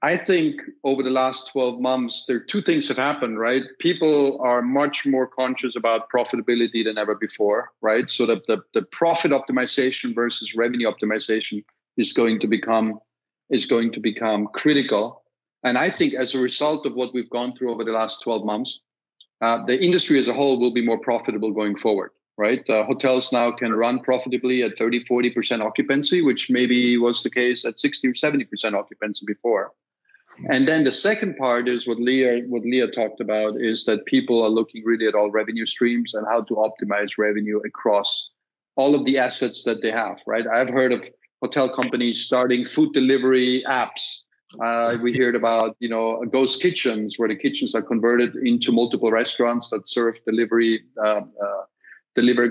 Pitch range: 115-130 Hz